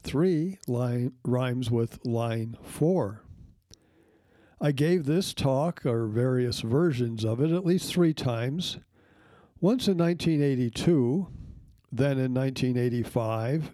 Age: 60-79